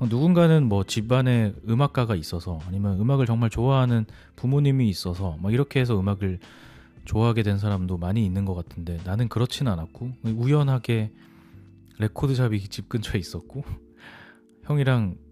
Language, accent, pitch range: Korean, native, 90-120 Hz